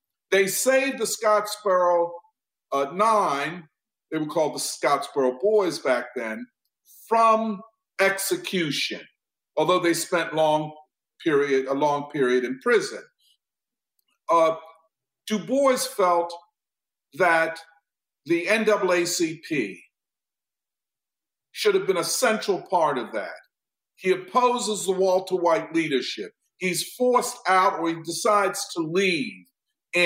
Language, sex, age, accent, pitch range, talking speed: English, male, 50-69, American, 165-225 Hz, 110 wpm